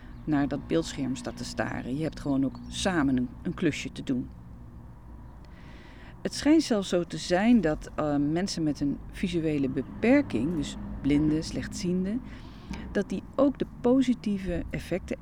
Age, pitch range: 40-59, 140-185 Hz